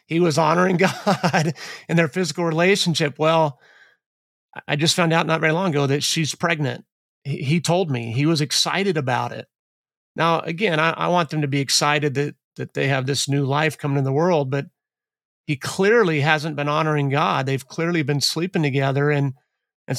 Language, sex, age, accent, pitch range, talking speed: English, male, 30-49, American, 140-160 Hz, 175 wpm